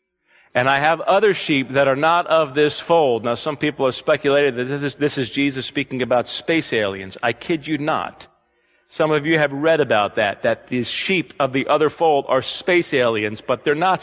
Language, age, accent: English, 40-59, American